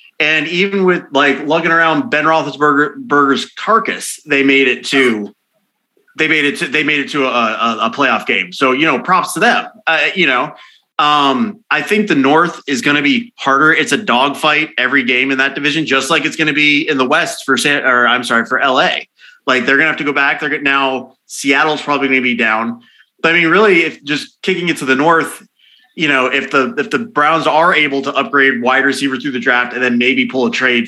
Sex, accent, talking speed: male, American, 230 wpm